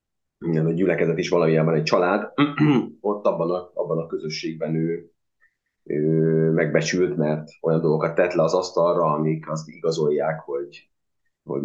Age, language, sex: 30-49, Hungarian, male